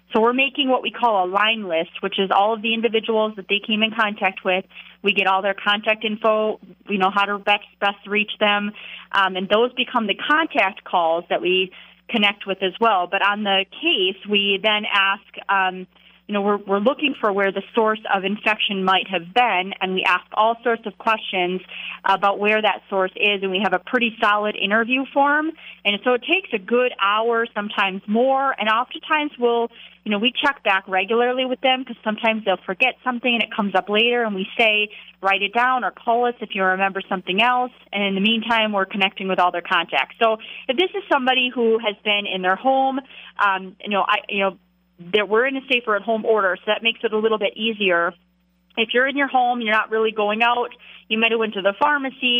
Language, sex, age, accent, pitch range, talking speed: English, female, 30-49, American, 195-235 Hz, 220 wpm